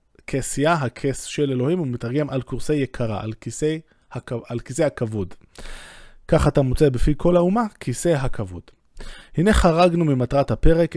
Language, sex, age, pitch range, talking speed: Hebrew, male, 20-39, 110-150 Hz, 135 wpm